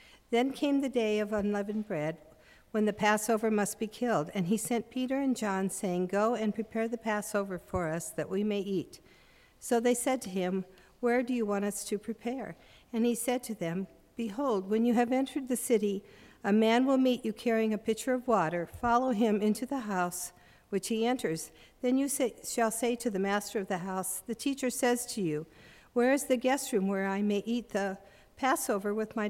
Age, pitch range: 50-69, 195-240 Hz